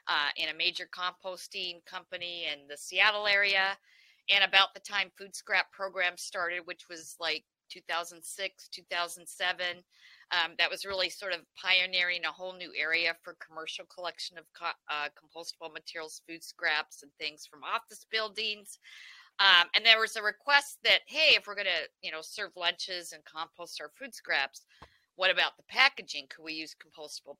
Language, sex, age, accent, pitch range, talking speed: English, female, 40-59, American, 155-195 Hz, 175 wpm